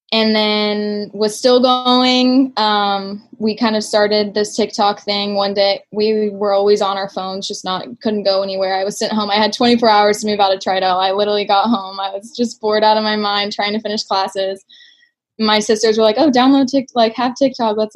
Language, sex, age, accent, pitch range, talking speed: English, female, 10-29, American, 195-220 Hz, 220 wpm